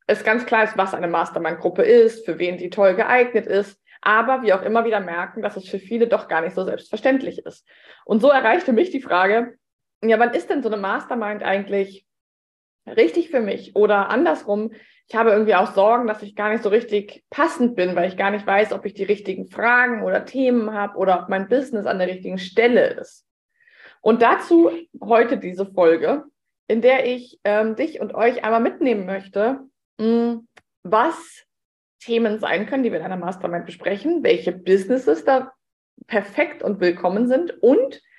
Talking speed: 185 wpm